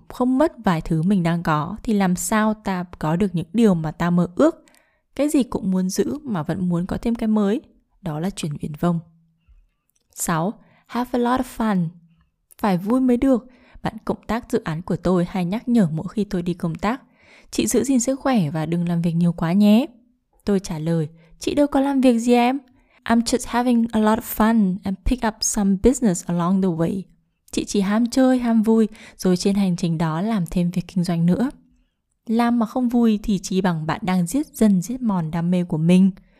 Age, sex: 20-39, female